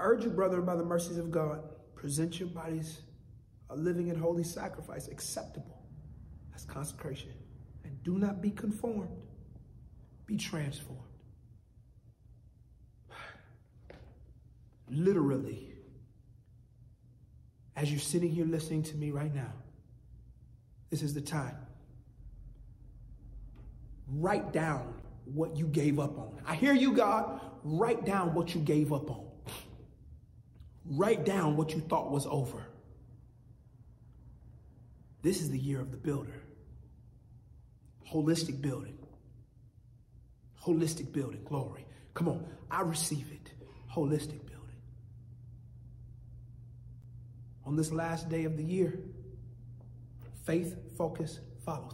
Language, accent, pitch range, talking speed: English, American, 120-160 Hz, 110 wpm